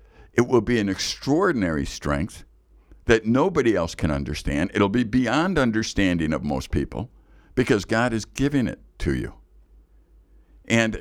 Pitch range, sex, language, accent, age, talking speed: 80-105 Hz, male, English, American, 60-79, 140 wpm